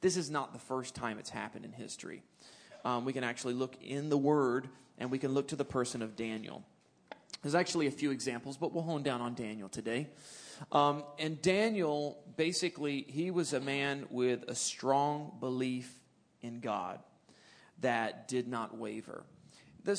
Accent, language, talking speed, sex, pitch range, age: American, English, 175 wpm, male, 125-165 Hz, 30-49